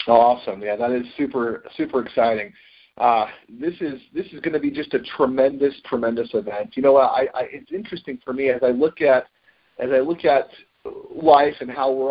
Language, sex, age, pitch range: English, male, 40-59, 120-150 Hz